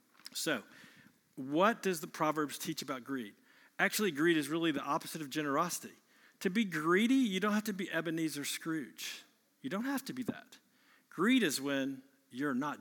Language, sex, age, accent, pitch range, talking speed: English, male, 50-69, American, 165-250 Hz, 175 wpm